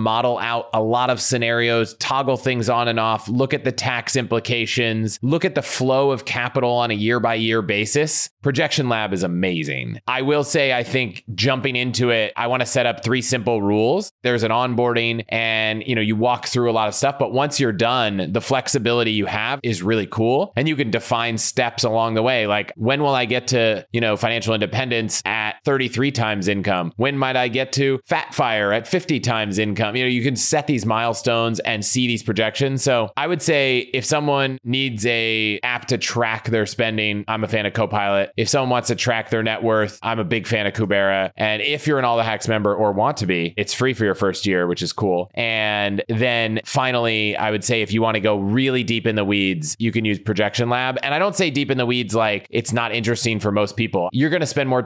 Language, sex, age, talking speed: English, male, 30-49, 230 wpm